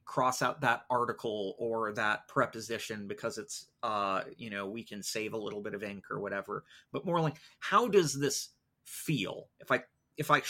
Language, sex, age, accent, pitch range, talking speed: English, male, 30-49, American, 105-145 Hz, 190 wpm